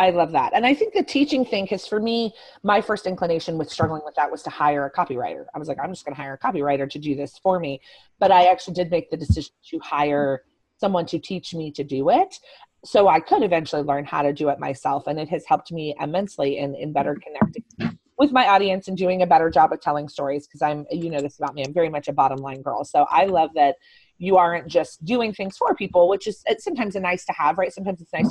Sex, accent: female, American